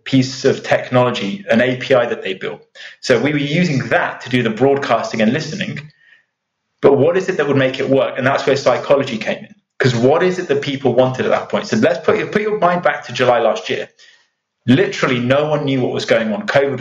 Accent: British